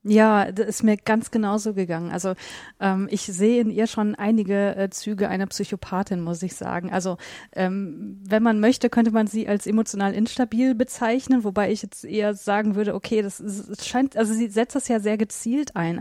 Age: 30-49